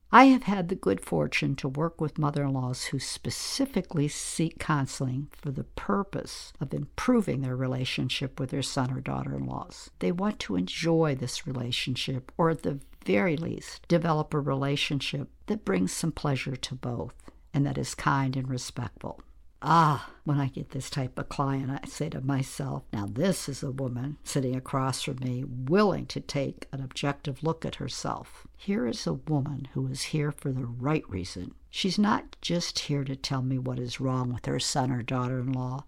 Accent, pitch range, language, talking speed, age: American, 130-155 Hz, English, 180 wpm, 60-79